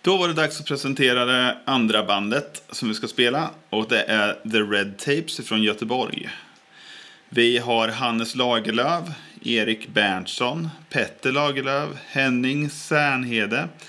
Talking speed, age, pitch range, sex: 135 wpm, 30-49, 110-145 Hz, male